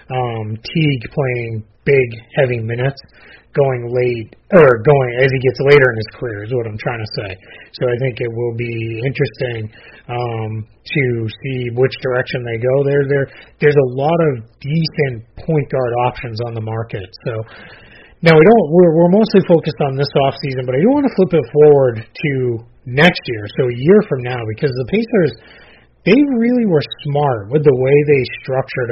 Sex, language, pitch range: male, English, 120-155 Hz